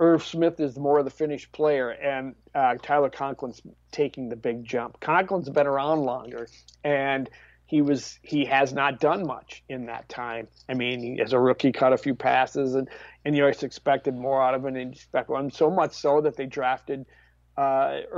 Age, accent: 50-69, American